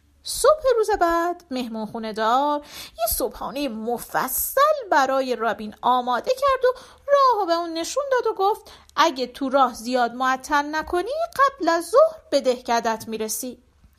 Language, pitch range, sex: Persian, 230-340 Hz, female